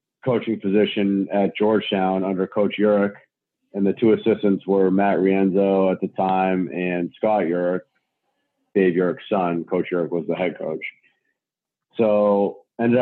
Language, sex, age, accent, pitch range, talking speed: English, male, 40-59, American, 95-105 Hz, 145 wpm